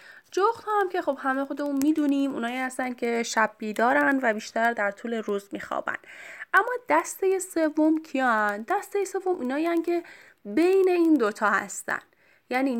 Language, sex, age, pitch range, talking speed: Persian, female, 10-29, 215-305 Hz, 150 wpm